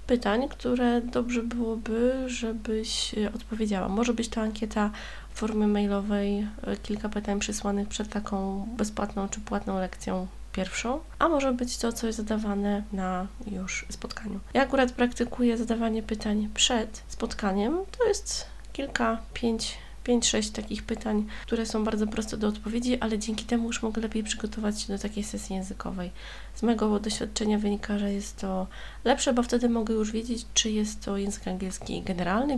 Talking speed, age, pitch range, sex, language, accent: 155 wpm, 20-39, 200-230 Hz, female, Polish, native